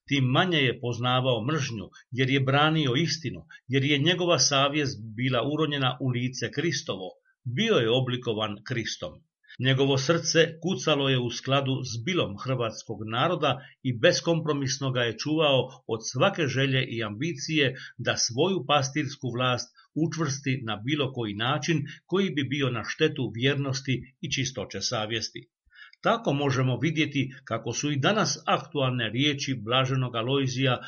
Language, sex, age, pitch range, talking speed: Croatian, male, 50-69, 125-150 Hz, 140 wpm